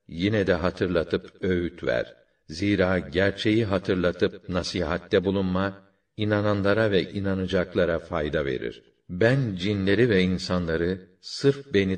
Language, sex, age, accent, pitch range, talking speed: Turkish, male, 60-79, native, 85-100 Hz, 105 wpm